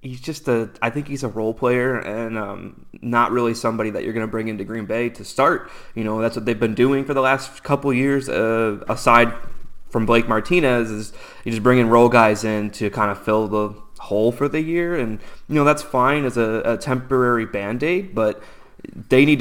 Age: 20-39